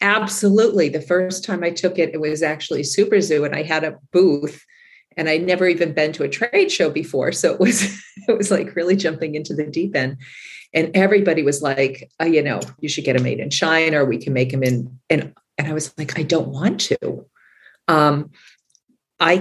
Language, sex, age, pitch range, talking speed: English, female, 40-59, 150-185 Hz, 215 wpm